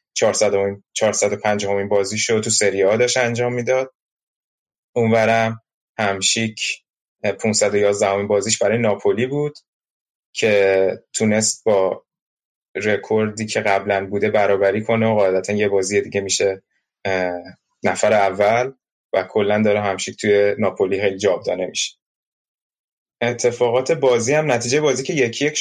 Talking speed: 120 wpm